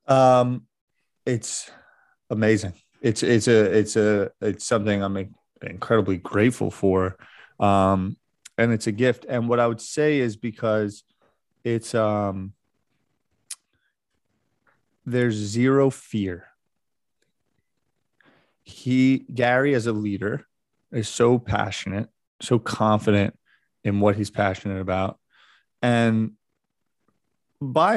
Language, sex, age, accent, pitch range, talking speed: English, male, 30-49, American, 105-125 Hz, 105 wpm